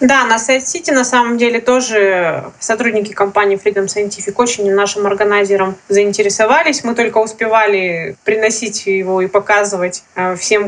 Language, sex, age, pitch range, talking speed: Russian, female, 20-39, 195-225 Hz, 135 wpm